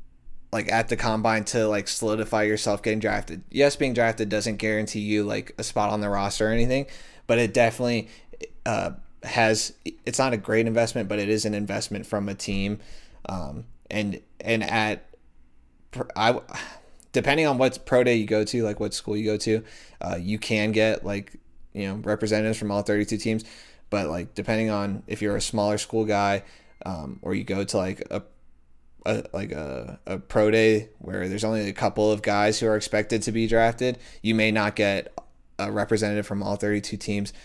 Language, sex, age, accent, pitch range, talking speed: English, male, 20-39, American, 100-110 Hz, 190 wpm